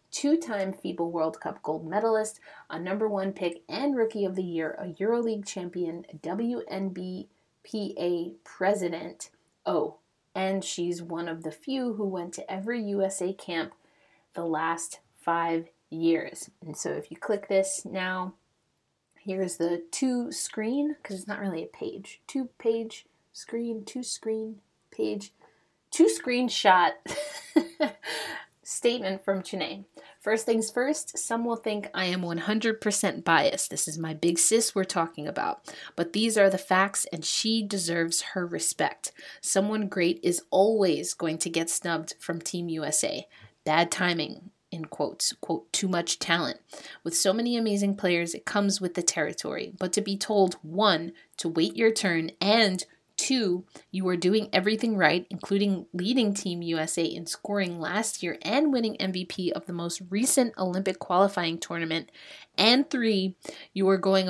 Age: 30-49